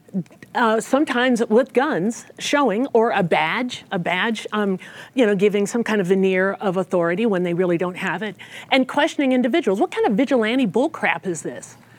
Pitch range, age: 205-260 Hz, 40-59